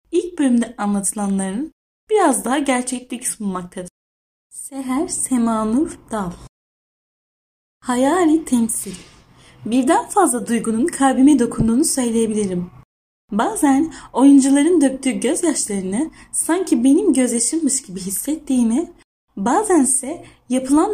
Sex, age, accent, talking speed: female, 10-29, native, 85 wpm